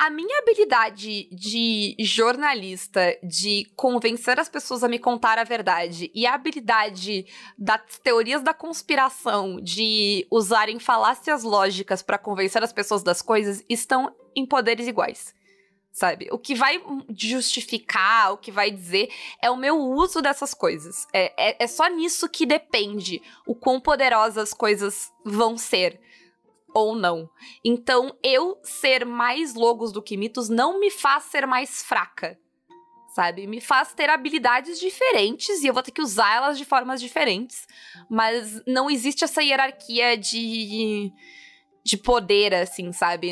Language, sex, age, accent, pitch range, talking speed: Portuguese, female, 20-39, Brazilian, 200-270 Hz, 145 wpm